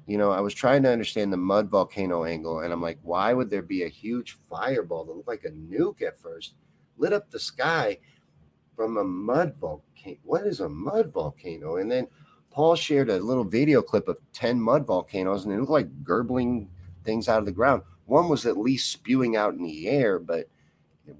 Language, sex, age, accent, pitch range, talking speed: English, male, 40-59, American, 100-150 Hz, 210 wpm